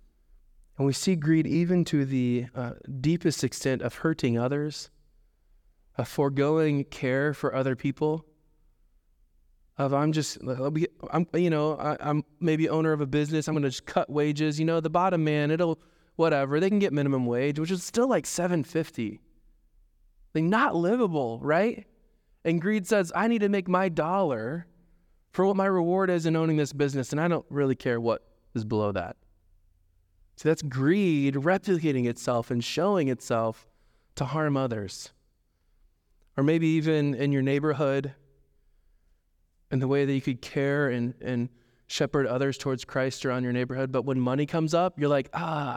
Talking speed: 170 wpm